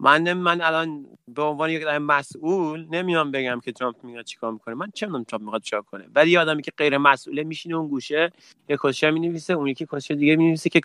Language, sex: Persian, male